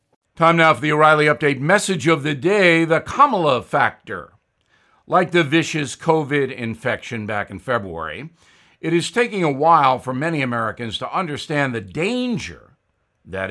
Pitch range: 130-170 Hz